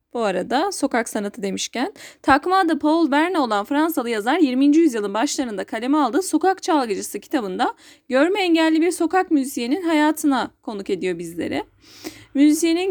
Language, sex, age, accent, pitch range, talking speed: Turkish, female, 10-29, native, 245-330 Hz, 140 wpm